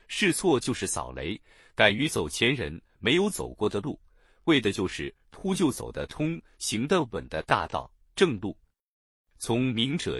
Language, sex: Chinese, male